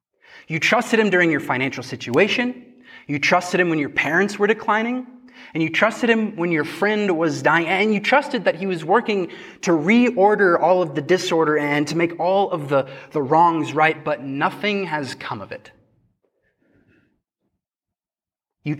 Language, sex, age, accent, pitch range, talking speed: English, male, 20-39, American, 130-195 Hz, 170 wpm